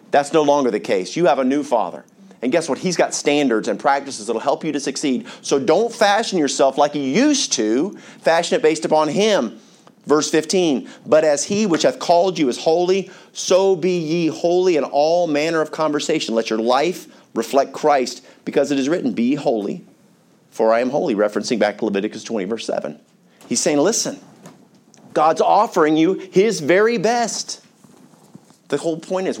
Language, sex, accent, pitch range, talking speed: English, male, American, 125-175 Hz, 190 wpm